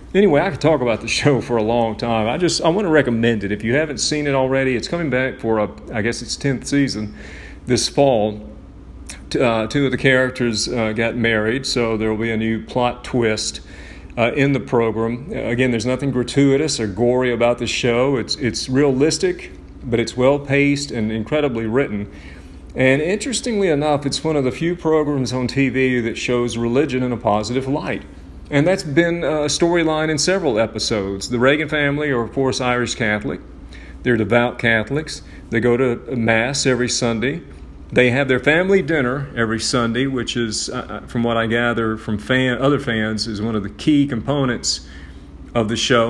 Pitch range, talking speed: 110-135 Hz, 185 wpm